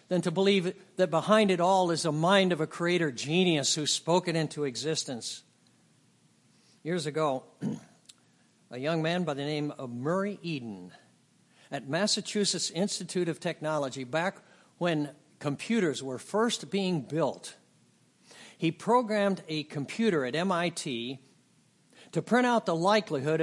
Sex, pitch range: male, 135-185 Hz